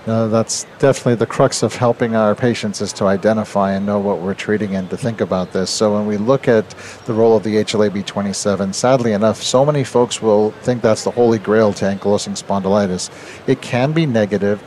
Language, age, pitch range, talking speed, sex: English, 50-69, 105-125 Hz, 200 wpm, male